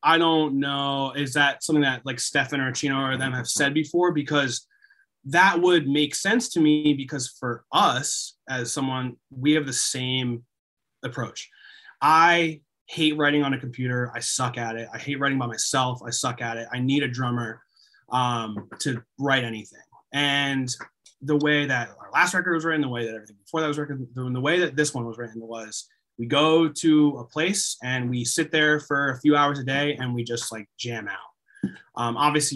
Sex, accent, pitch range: male, American, 120-150 Hz